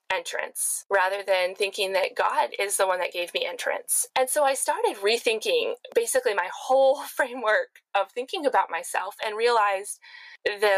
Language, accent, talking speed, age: English, American, 160 wpm, 20-39